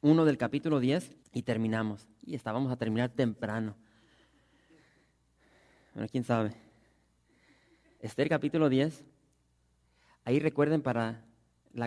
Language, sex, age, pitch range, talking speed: English, male, 30-49, 120-165 Hz, 105 wpm